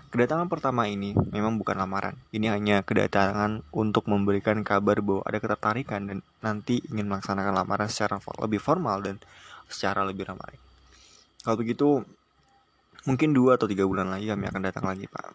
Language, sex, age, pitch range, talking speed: Indonesian, male, 20-39, 100-115 Hz, 155 wpm